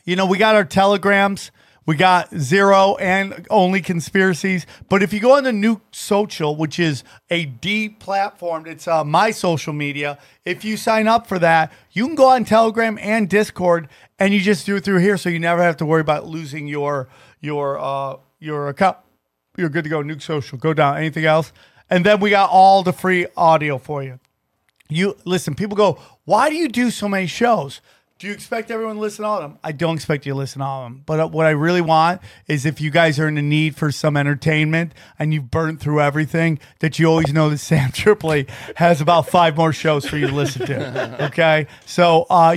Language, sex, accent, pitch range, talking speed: English, male, American, 155-205 Hz, 220 wpm